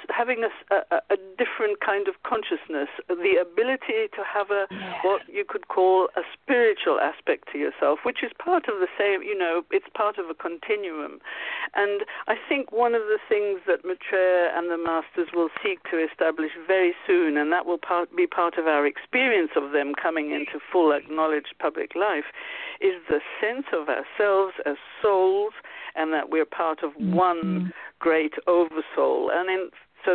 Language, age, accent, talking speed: English, 50-69, British, 170 wpm